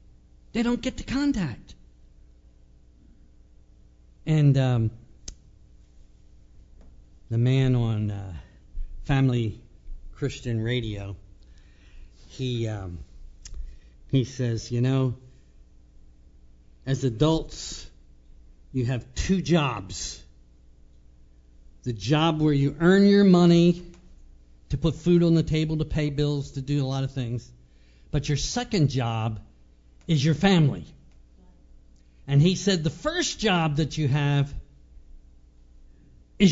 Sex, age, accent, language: male, 50-69, American, English